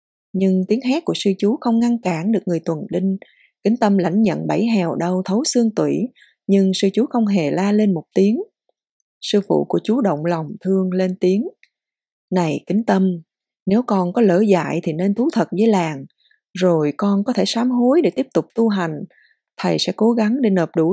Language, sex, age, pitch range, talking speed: Vietnamese, female, 20-39, 185-235 Hz, 210 wpm